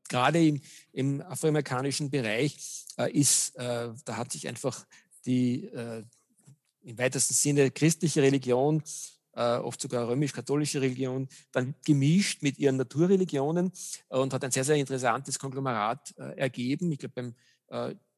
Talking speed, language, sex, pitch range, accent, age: 140 wpm, German, male, 130-160 Hz, German, 50-69